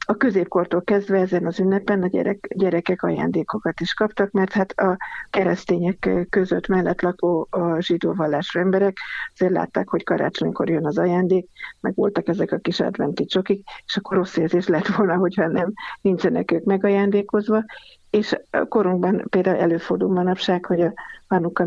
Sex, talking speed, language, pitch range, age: female, 160 wpm, Hungarian, 180-205 Hz, 50-69